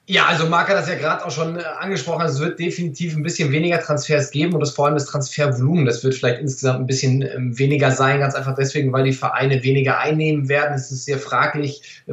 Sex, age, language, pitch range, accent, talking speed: male, 20-39, German, 135-150 Hz, German, 230 wpm